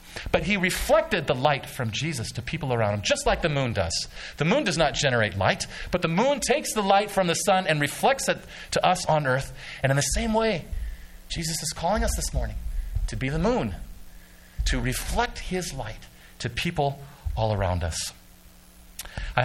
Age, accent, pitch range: 40-59, American, 100-150 Hz